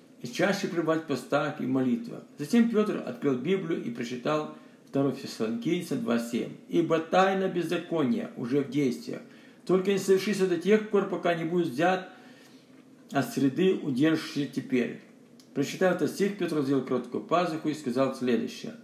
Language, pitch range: Russian, 140-200 Hz